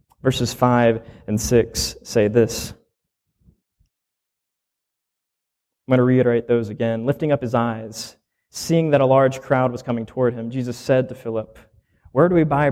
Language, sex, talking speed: English, male, 155 wpm